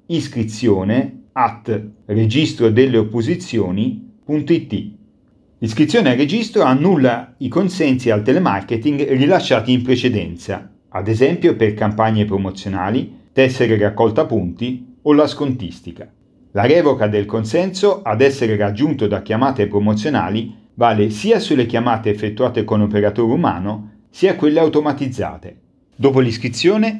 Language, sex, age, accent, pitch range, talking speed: Italian, male, 40-59, native, 105-145 Hz, 110 wpm